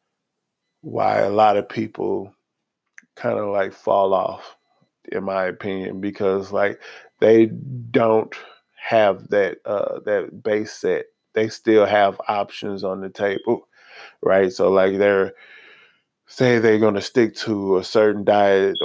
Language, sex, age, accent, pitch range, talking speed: English, male, 20-39, American, 100-125 Hz, 135 wpm